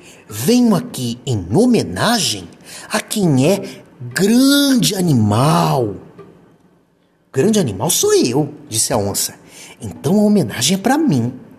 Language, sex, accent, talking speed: Portuguese, male, Brazilian, 115 wpm